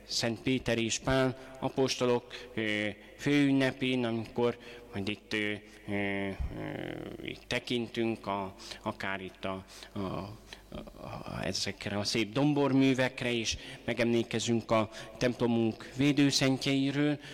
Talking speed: 95 wpm